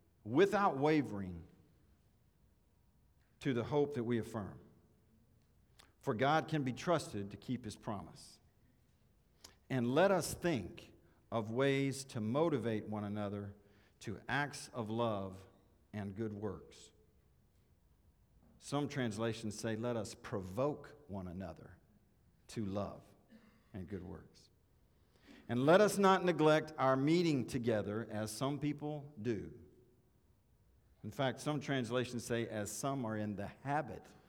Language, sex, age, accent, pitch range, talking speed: English, male, 50-69, American, 100-135 Hz, 125 wpm